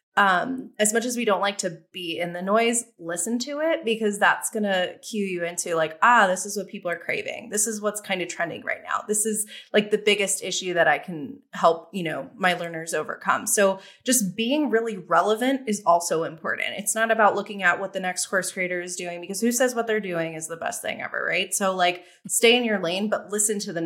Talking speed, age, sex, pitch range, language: 235 wpm, 20-39, female, 180-230 Hz, English